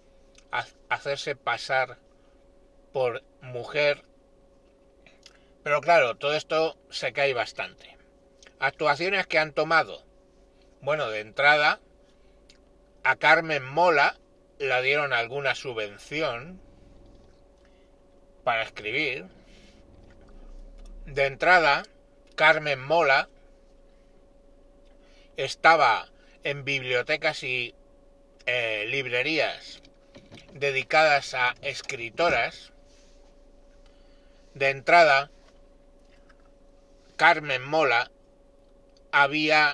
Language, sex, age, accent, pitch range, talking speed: Spanish, male, 60-79, Spanish, 125-150 Hz, 70 wpm